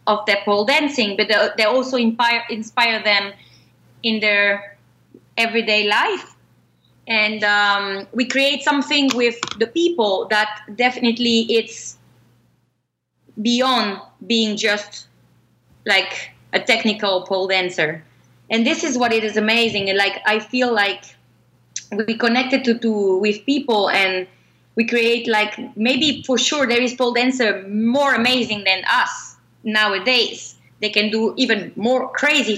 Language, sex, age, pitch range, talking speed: English, female, 20-39, 210-255 Hz, 135 wpm